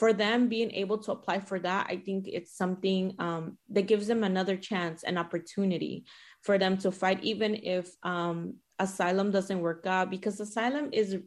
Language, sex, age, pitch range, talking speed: English, female, 20-39, 175-205 Hz, 180 wpm